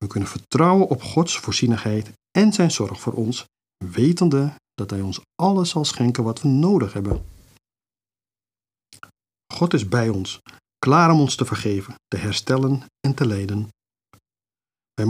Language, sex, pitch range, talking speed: Dutch, male, 105-140 Hz, 145 wpm